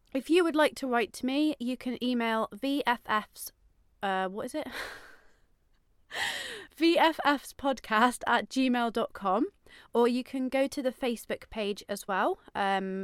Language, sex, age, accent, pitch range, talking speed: English, female, 30-49, British, 200-265 Hz, 140 wpm